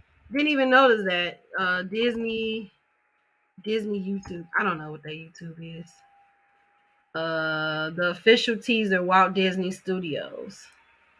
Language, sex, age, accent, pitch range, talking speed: English, female, 30-49, American, 190-240 Hz, 120 wpm